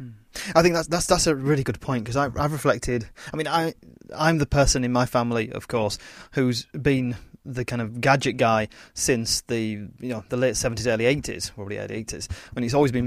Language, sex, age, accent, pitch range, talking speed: English, male, 30-49, British, 110-140 Hz, 215 wpm